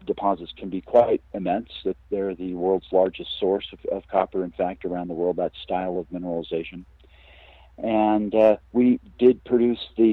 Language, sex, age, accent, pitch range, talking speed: English, male, 50-69, American, 90-100 Hz, 170 wpm